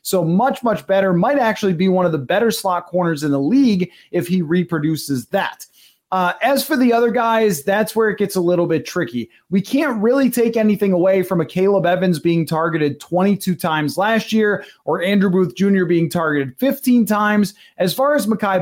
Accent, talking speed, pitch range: American, 200 wpm, 165-210 Hz